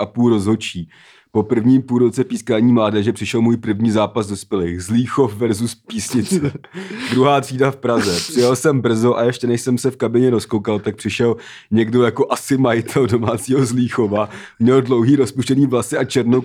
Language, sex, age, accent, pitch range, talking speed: Czech, male, 30-49, native, 115-135 Hz, 180 wpm